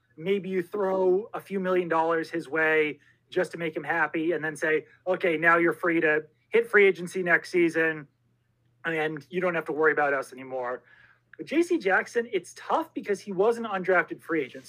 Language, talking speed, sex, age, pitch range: English, 195 wpm, male, 30-49, 155-195 Hz